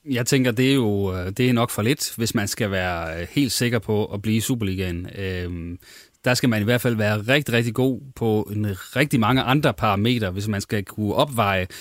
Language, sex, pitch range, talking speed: Danish, male, 105-125 Hz, 220 wpm